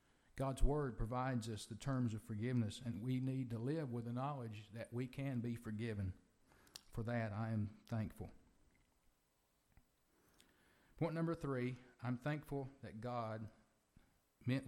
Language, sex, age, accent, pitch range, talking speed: English, male, 50-69, American, 110-135 Hz, 140 wpm